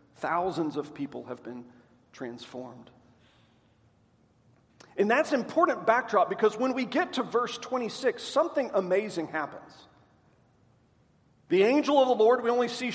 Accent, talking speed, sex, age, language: American, 135 wpm, male, 40-59, English